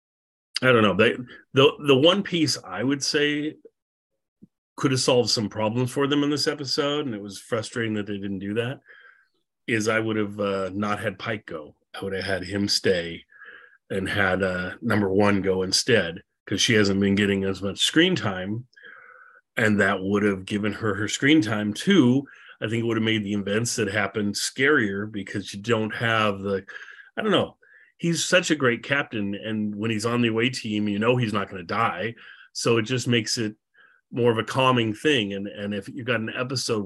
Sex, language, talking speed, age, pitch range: male, English, 205 wpm, 30-49, 100-125 Hz